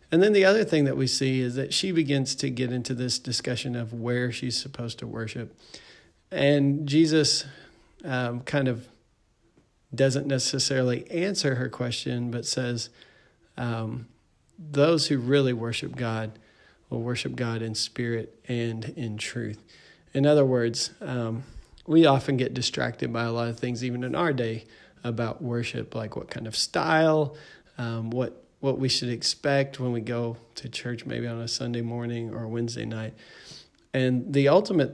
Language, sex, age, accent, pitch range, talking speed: English, male, 40-59, American, 115-135 Hz, 165 wpm